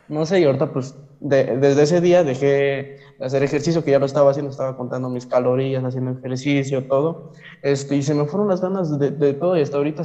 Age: 20-39